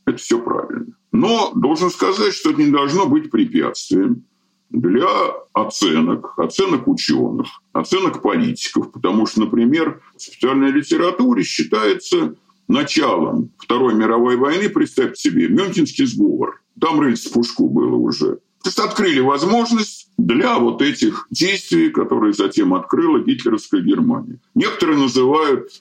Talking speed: 125 wpm